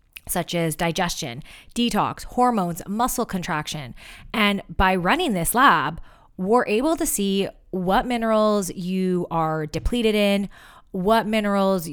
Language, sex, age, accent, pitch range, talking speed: English, female, 20-39, American, 170-215 Hz, 120 wpm